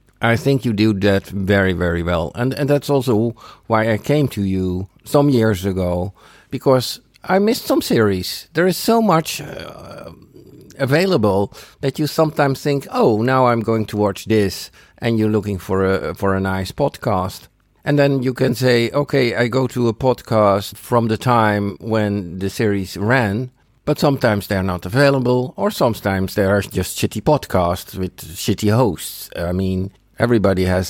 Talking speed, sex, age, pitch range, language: 170 wpm, male, 50-69, 100-130 Hz, English